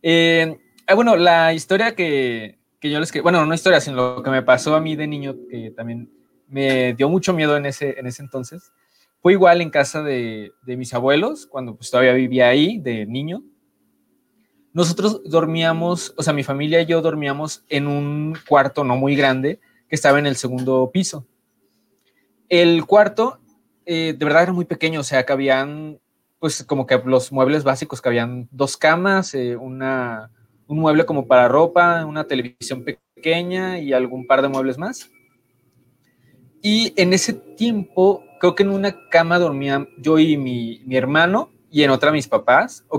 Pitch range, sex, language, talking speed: 130-170 Hz, male, Spanish, 180 wpm